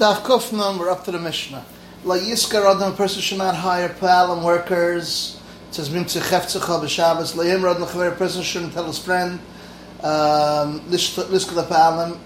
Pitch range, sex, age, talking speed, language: 155-180 Hz, male, 30-49, 115 wpm, English